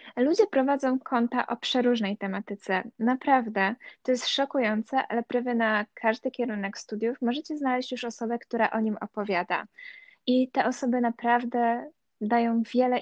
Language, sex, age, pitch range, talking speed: Polish, female, 20-39, 210-245 Hz, 140 wpm